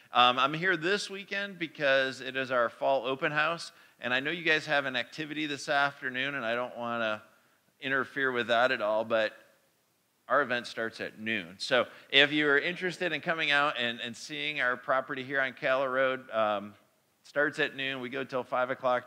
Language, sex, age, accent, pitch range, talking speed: English, male, 40-59, American, 115-140 Hz, 200 wpm